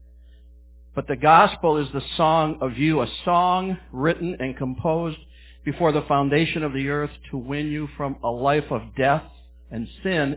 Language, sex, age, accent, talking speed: English, male, 60-79, American, 170 wpm